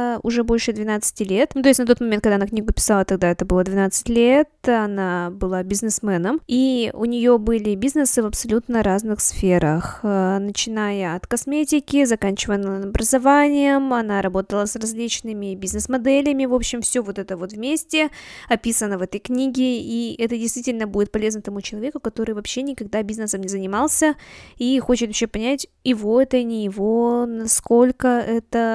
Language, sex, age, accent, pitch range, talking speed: Russian, female, 20-39, native, 205-245 Hz, 155 wpm